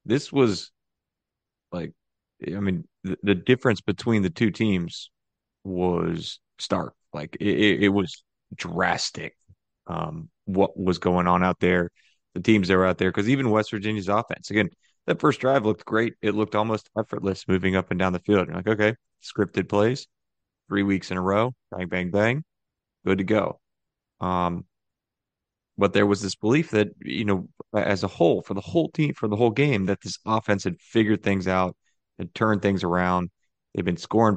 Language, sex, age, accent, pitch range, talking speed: English, male, 30-49, American, 95-110 Hz, 180 wpm